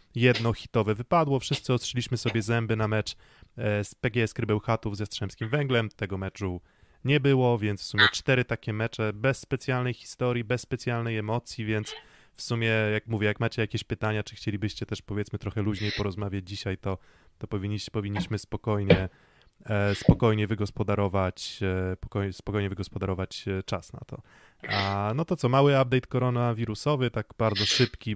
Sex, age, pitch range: male, 20-39, 105-125 Hz